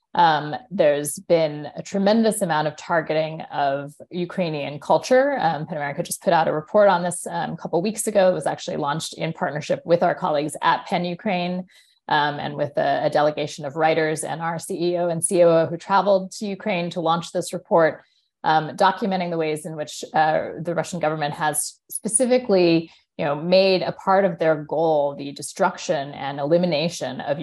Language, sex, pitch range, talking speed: Arabic, female, 150-190 Hz, 180 wpm